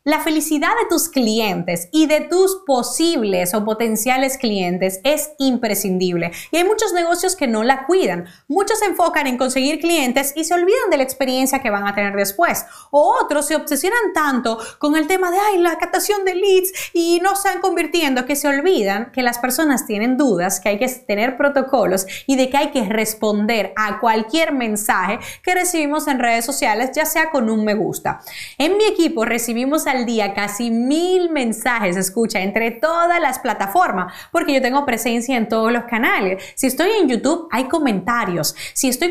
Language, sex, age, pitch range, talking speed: Spanish, female, 30-49, 220-320 Hz, 185 wpm